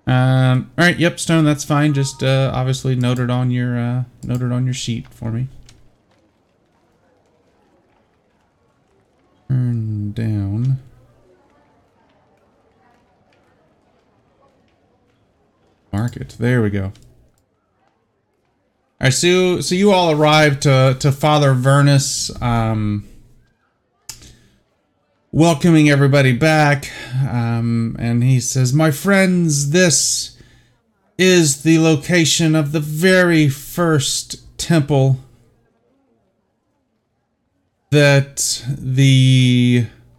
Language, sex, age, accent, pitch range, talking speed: English, male, 30-49, American, 120-155 Hz, 85 wpm